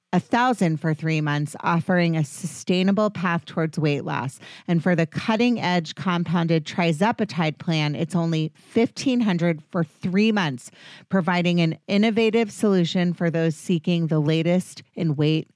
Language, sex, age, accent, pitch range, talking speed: English, female, 30-49, American, 160-195 Hz, 145 wpm